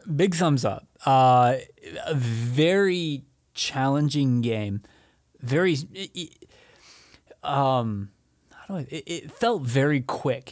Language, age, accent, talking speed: English, 20-39, American, 115 wpm